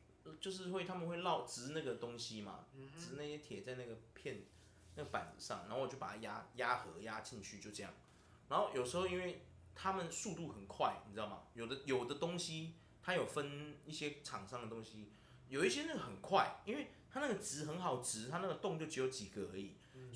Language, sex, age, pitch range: Chinese, male, 20-39, 110-175 Hz